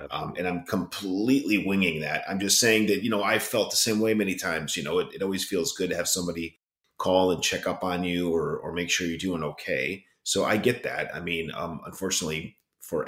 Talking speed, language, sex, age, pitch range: 235 wpm, English, male, 30-49, 90-115 Hz